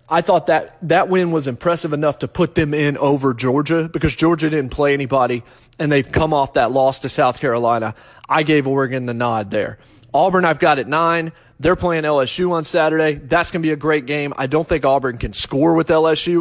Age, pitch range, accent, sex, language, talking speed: 30-49, 130-165 Hz, American, male, English, 215 wpm